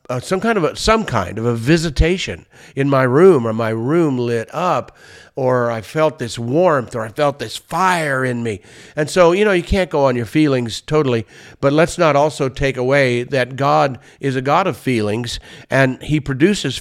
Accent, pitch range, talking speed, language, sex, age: American, 125-160 Hz, 195 wpm, English, male, 50-69